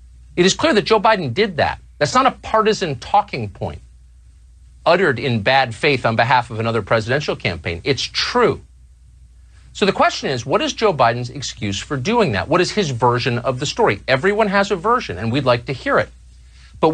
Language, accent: English, American